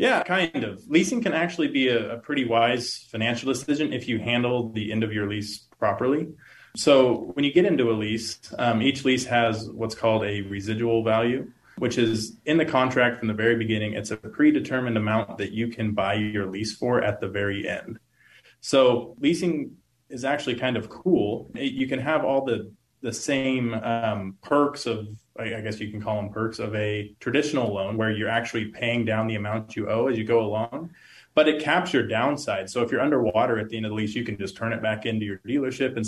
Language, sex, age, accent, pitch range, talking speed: English, male, 20-39, American, 110-125 Hz, 215 wpm